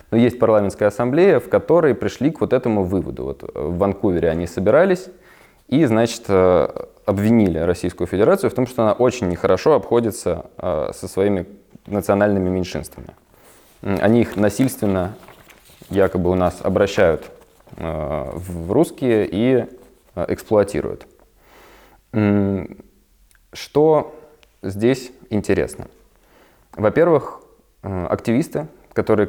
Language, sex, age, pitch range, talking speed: Russian, male, 20-39, 90-110 Hz, 100 wpm